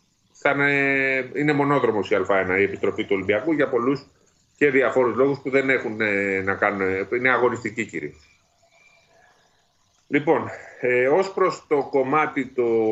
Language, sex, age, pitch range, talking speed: Greek, male, 30-49, 115-150 Hz, 125 wpm